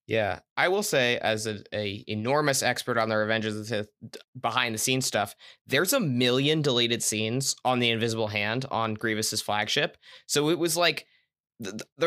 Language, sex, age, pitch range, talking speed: English, male, 20-39, 115-145 Hz, 180 wpm